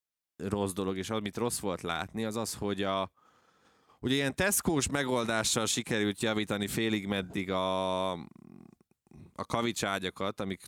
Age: 20-39